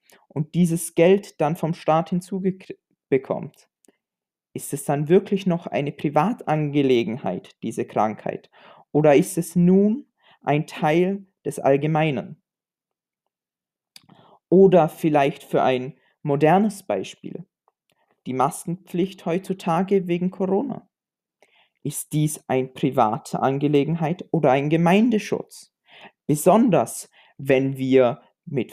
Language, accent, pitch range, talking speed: German, German, 150-190 Hz, 100 wpm